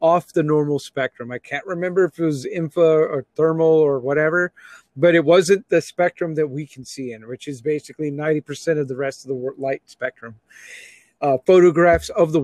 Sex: male